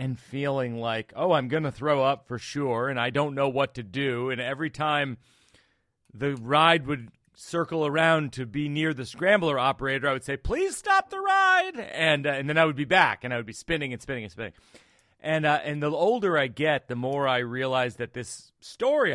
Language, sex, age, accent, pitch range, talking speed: English, male, 40-59, American, 115-150 Hz, 220 wpm